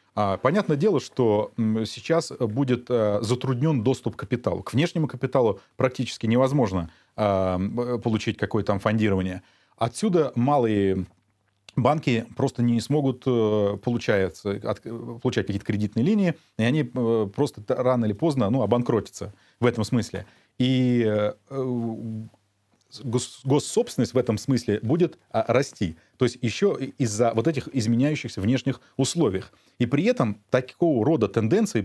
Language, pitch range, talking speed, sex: Russian, 105-130 Hz, 115 wpm, male